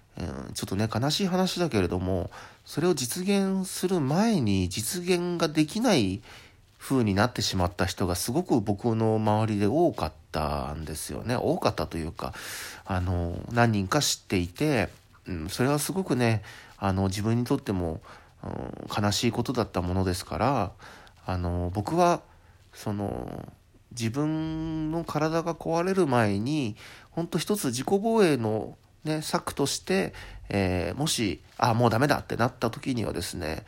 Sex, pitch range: male, 95-155 Hz